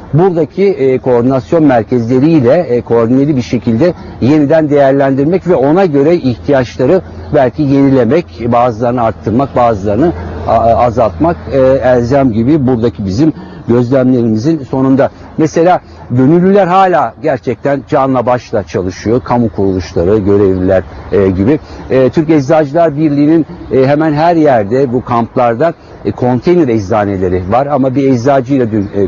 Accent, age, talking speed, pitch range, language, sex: native, 60-79, 120 wpm, 115-150 Hz, Turkish, male